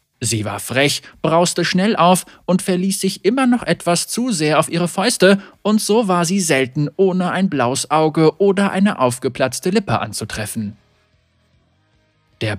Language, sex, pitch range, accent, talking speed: German, male, 125-185 Hz, German, 155 wpm